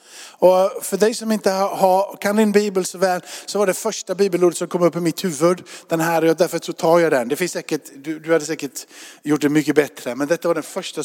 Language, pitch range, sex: Swedish, 160-200 Hz, male